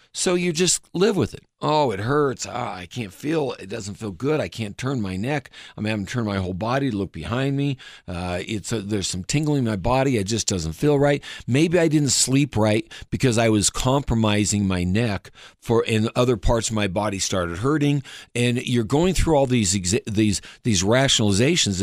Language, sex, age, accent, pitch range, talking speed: English, male, 50-69, American, 100-140 Hz, 215 wpm